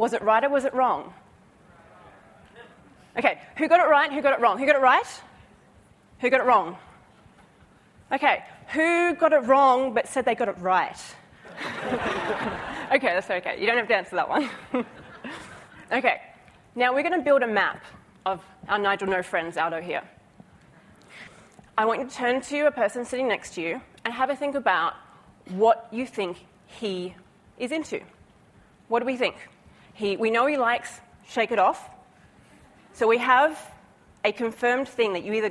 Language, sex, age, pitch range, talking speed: English, female, 30-49, 205-265 Hz, 175 wpm